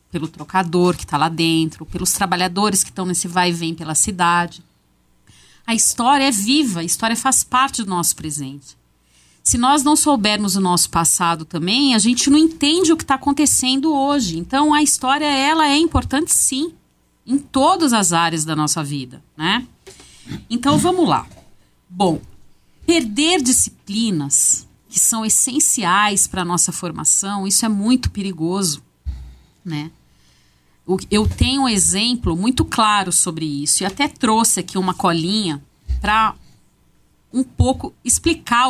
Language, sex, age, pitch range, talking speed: Portuguese, female, 40-59, 165-265 Hz, 145 wpm